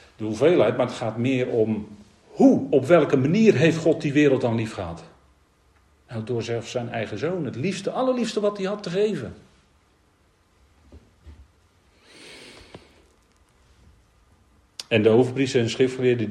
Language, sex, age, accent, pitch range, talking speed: Dutch, male, 40-59, Dutch, 95-145 Hz, 135 wpm